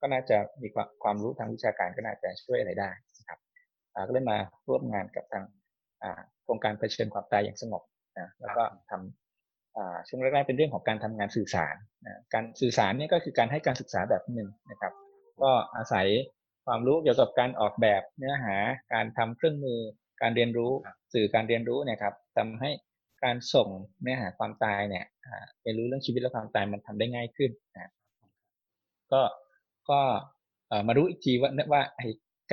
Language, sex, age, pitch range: Thai, male, 20-39, 110-140 Hz